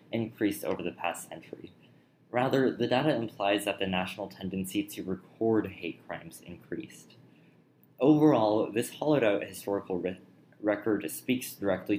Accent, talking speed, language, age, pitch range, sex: American, 135 wpm, English, 20-39, 90-110 Hz, male